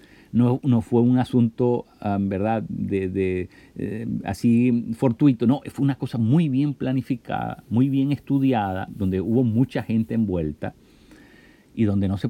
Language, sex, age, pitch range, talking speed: Spanish, male, 50-69, 90-120 Hz, 140 wpm